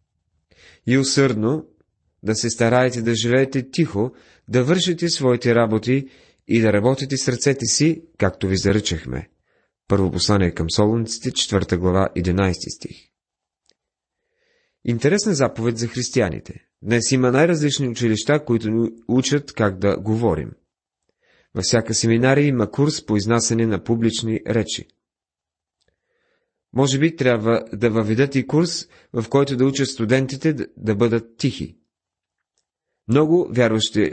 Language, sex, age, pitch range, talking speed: Bulgarian, male, 30-49, 105-135 Hz, 120 wpm